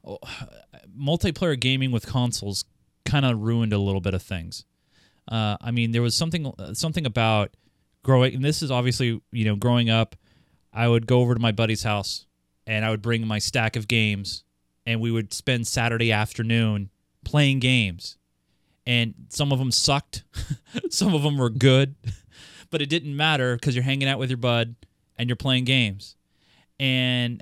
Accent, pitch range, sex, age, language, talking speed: American, 110-135 Hz, male, 30-49, English, 175 wpm